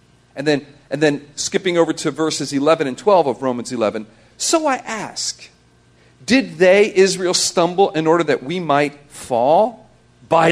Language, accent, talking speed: English, American, 160 wpm